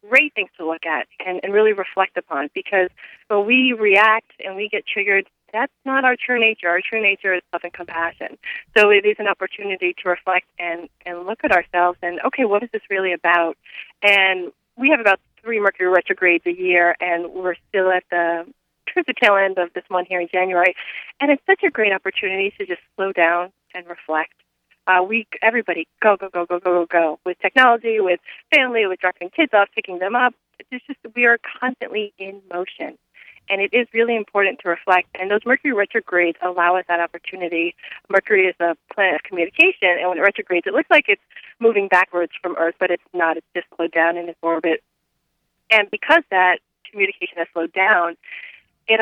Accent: American